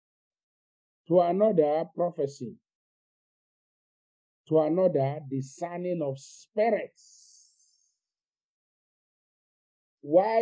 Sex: male